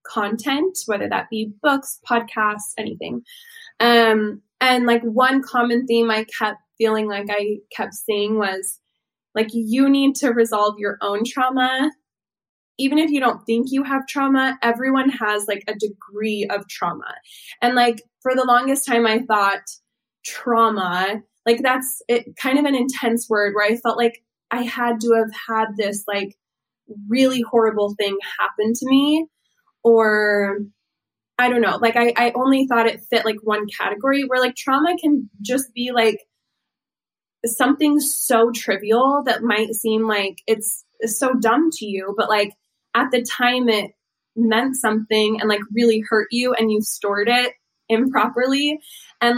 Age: 20-39